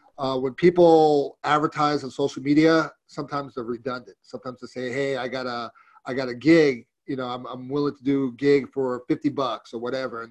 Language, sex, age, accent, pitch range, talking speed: English, male, 40-59, American, 120-145 Hz, 205 wpm